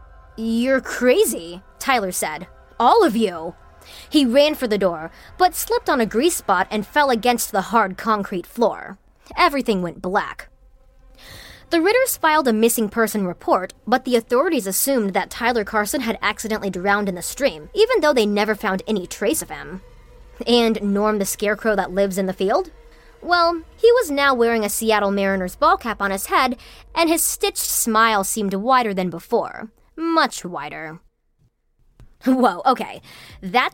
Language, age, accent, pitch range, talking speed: English, 20-39, American, 200-280 Hz, 165 wpm